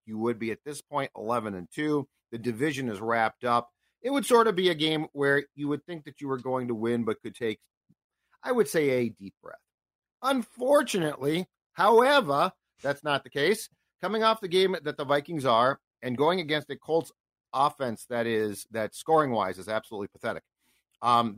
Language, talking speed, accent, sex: English, 195 wpm, American, male